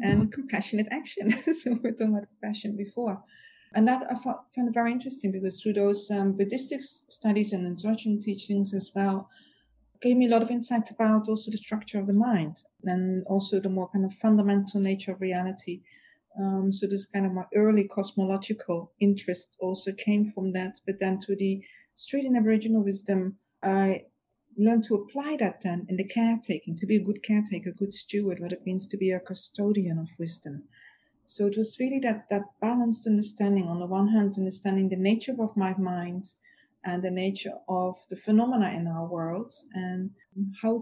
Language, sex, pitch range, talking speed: English, female, 190-225 Hz, 185 wpm